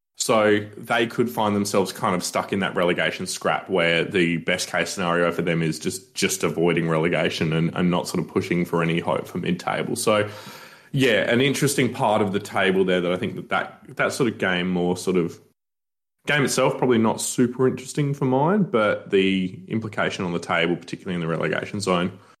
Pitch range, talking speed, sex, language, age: 95-130 Hz, 200 wpm, male, English, 20-39